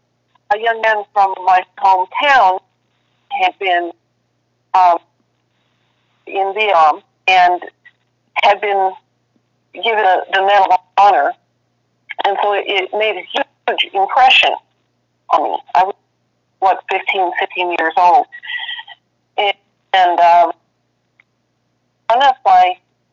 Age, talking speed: 50-69, 115 wpm